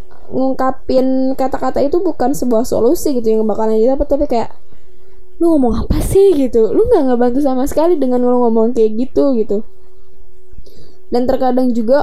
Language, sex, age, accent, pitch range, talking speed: Indonesian, female, 10-29, native, 220-265 Hz, 155 wpm